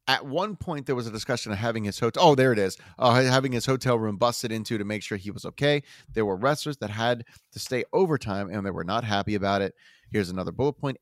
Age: 30-49